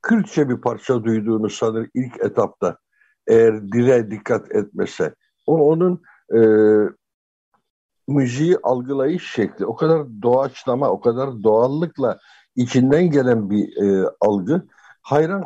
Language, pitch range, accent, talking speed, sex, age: Turkish, 110-140 Hz, native, 115 wpm, male, 60-79